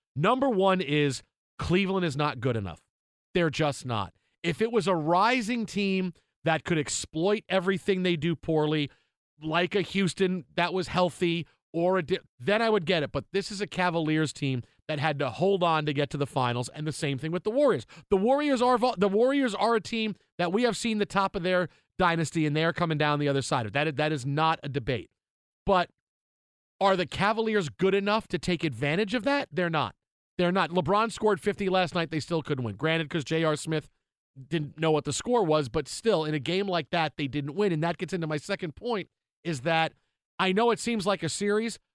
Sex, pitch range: male, 150-190 Hz